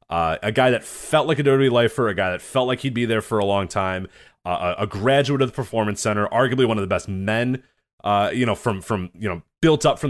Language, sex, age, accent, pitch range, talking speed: English, male, 30-49, American, 95-130 Hz, 260 wpm